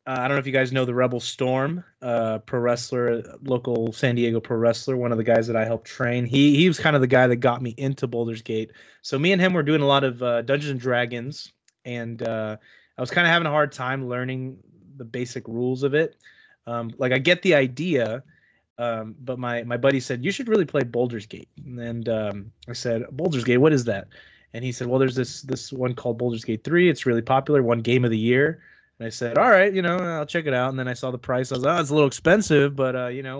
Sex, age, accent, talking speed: male, 20-39, American, 260 wpm